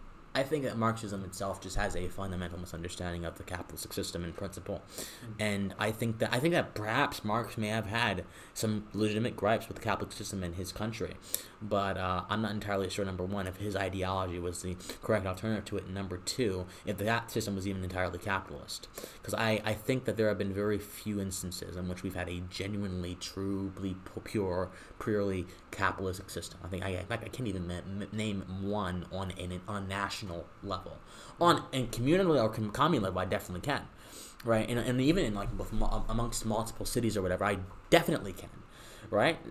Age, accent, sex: 20-39, American, male